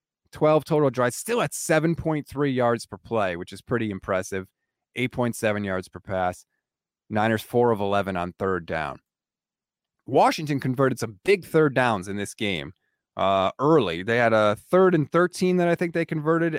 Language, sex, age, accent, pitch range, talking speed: English, male, 30-49, American, 105-155 Hz, 165 wpm